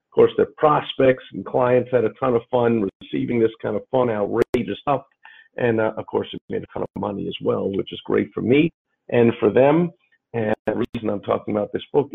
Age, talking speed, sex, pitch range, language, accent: 50-69, 225 wpm, male, 110-135 Hz, English, American